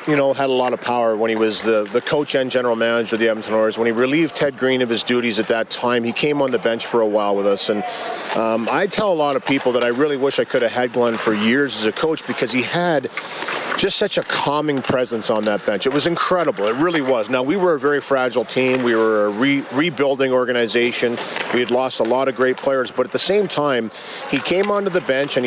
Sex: male